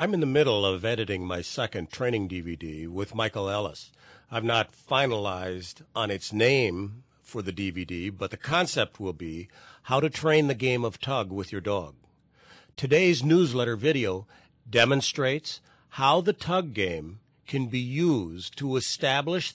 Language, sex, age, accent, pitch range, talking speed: English, male, 50-69, American, 105-150 Hz, 155 wpm